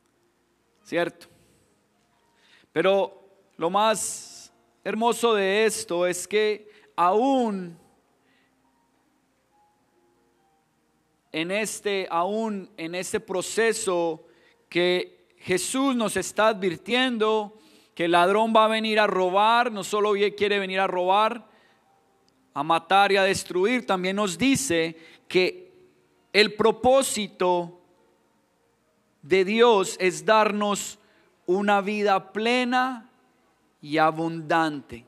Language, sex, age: English, male, 40-59